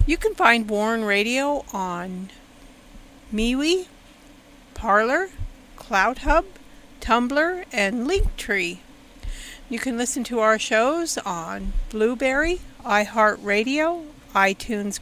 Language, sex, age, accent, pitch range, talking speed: English, female, 50-69, American, 215-275 Hz, 90 wpm